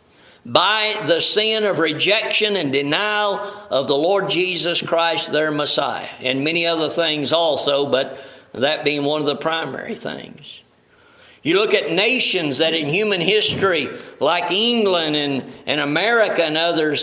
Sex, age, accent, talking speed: male, 50-69, American, 150 wpm